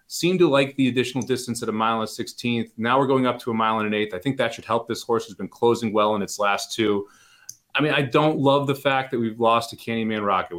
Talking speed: 280 wpm